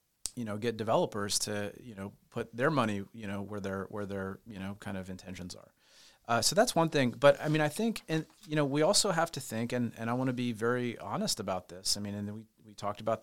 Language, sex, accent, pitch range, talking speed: English, male, American, 105-125 Hz, 260 wpm